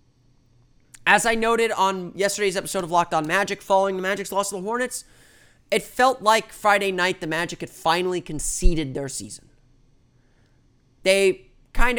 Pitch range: 125-190 Hz